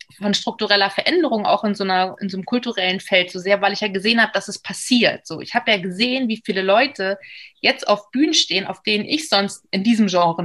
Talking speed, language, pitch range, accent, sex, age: 235 wpm, German, 200-250 Hz, German, female, 20-39